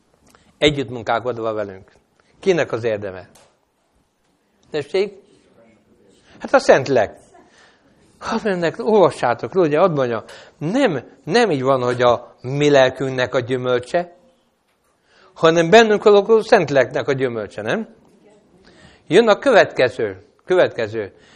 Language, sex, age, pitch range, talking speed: Hungarian, male, 60-79, 130-200 Hz, 100 wpm